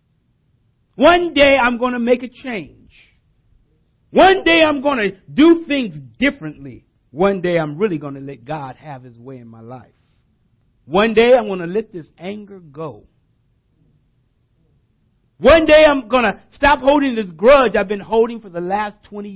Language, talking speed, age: English, 170 wpm, 50-69